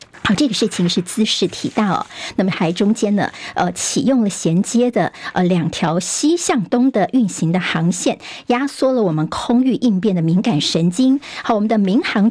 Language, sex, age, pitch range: Chinese, male, 50-69, 185-255 Hz